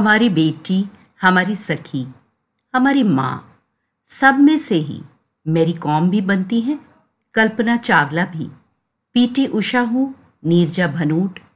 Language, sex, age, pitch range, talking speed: Hindi, female, 50-69, 150-230 Hz, 120 wpm